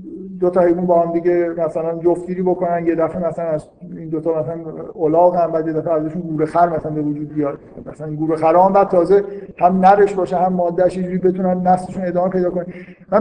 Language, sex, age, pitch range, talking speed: Persian, male, 50-69, 175-210 Hz, 205 wpm